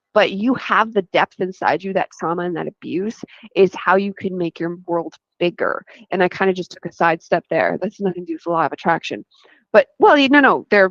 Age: 20-39